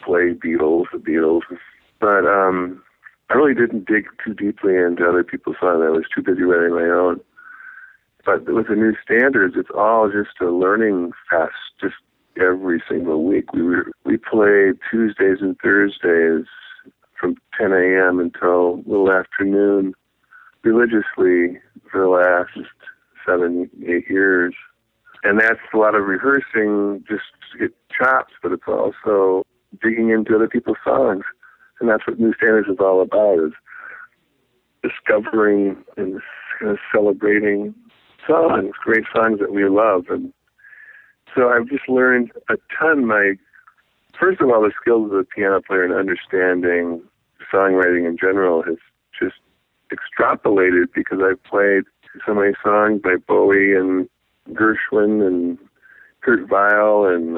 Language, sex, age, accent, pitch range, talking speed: English, male, 50-69, American, 90-110 Hz, 140 wpm